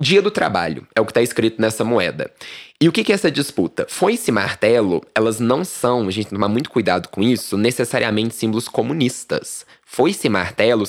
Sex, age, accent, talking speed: male, 20-39, Brazilian, 205 wpm